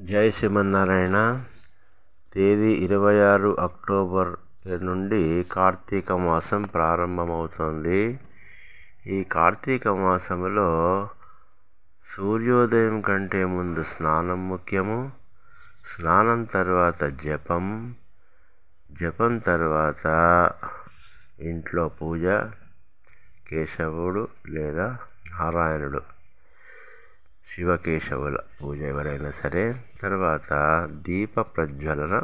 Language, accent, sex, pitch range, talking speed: Telugu, native, male, 80-100 Hz, 65 wpm